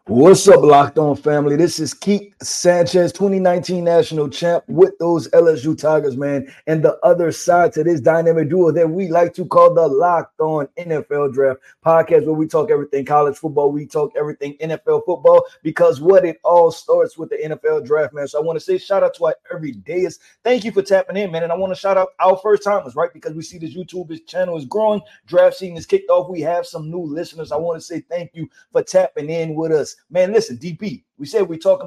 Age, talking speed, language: 30-49, 225 wpm, English